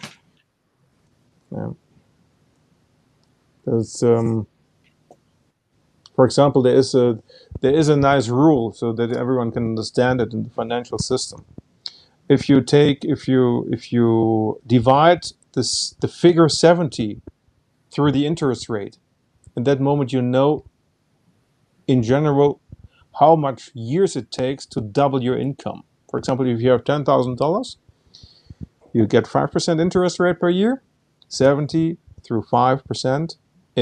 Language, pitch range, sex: English, 125-155 Hz, male